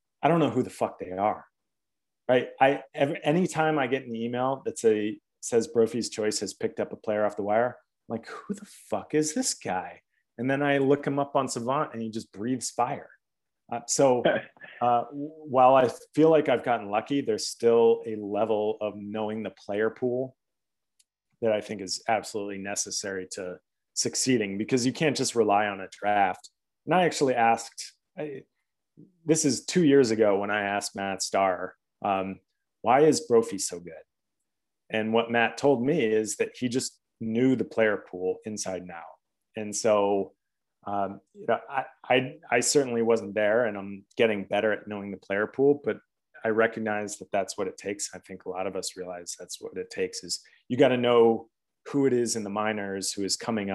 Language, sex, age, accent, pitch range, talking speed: English, male, 30-49, American, 100-130 Hz, 190 wpm